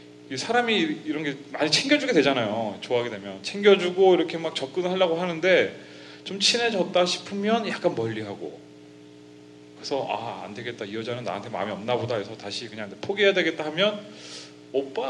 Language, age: Korean, 30-49